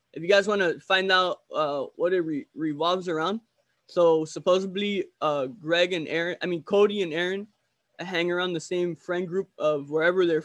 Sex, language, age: male, English, 20-39